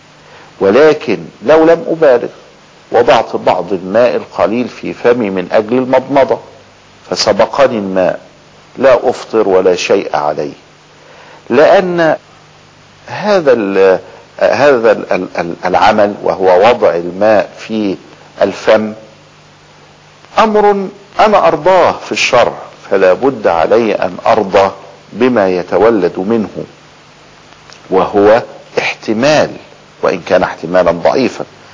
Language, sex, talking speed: Arabic, male, 90 wpm